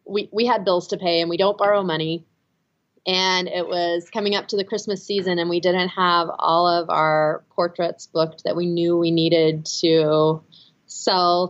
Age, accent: 30-49, American